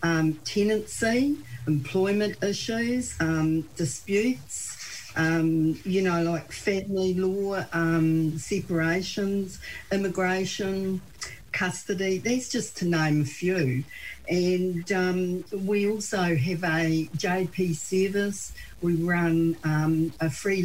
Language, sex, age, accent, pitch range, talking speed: English, female, 50-69, Australian, 155-190 Hz, 100 wpm